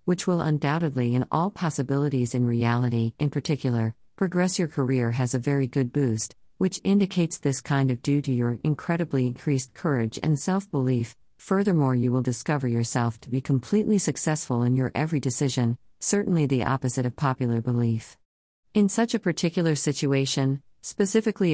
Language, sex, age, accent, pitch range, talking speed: English, female, 50-69, American, 125-155 Hz, 155 wpm